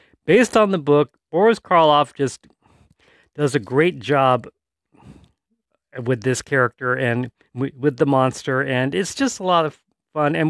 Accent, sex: American, male